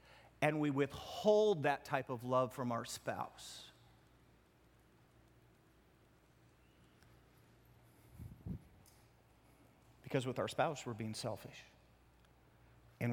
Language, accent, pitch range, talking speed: English, American, 145-235 Hz, 80 wpm